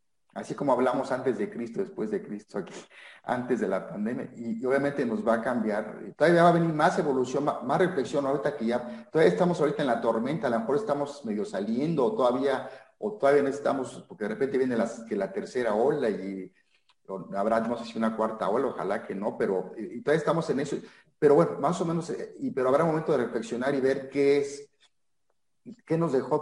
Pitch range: 120-170 Hz